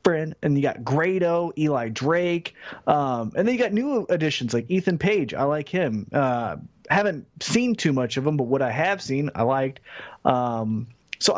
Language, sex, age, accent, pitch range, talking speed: English, male, 30-49, American, 125-170 Hz, 190 wpm